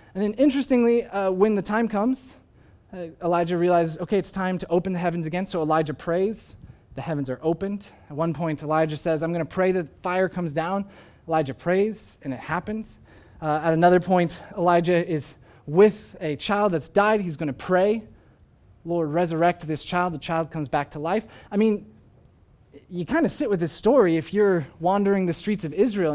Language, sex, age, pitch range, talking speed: English, male, 20-39, 165-220 Hz, 195 wpm